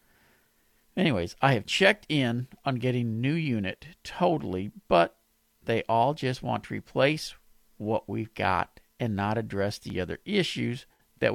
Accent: American